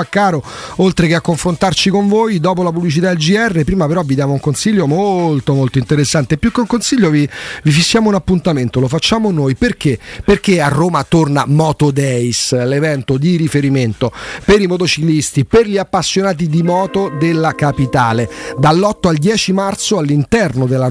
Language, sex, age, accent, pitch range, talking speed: Italian, male, 40-59, native, 150-195 Hz, 170 wpm